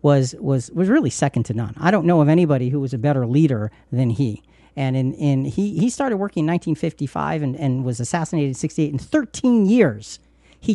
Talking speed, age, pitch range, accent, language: 210 wpm, 40-59, 145-195 Hz, American, English